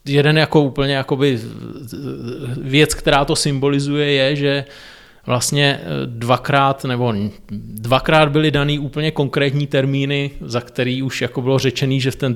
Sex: male